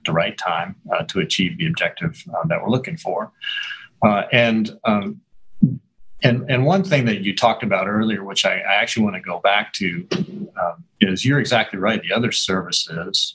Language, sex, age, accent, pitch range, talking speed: English, male, 40-59, American, 105-175 Hz, 180 wpm